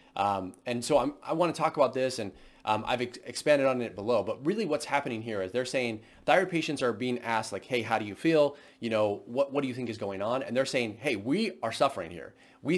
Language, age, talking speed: English, 30-49, 260 wpm